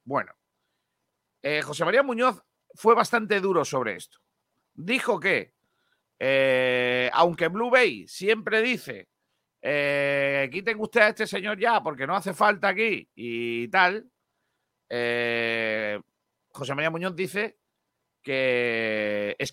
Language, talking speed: Spanish, 120 wpm